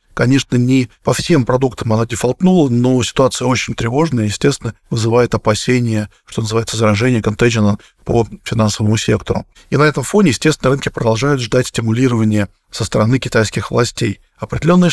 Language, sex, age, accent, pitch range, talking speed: Russian, male, 20-39, native, 115-145 Hz, 140 wpm